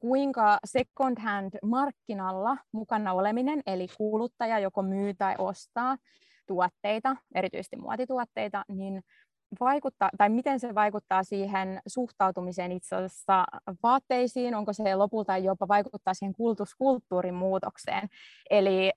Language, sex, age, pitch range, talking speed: Finnish, female, 20-39, 190-230 Hz, 110 wpm